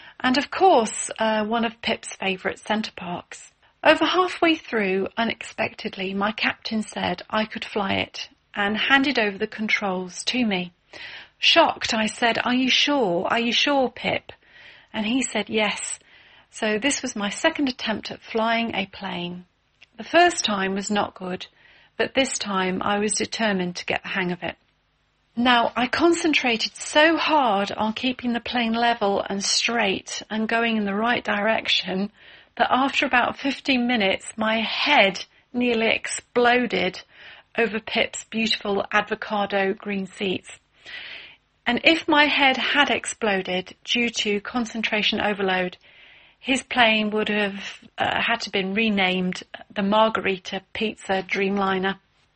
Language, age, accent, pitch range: English, 40-59, British, 200-245 Hz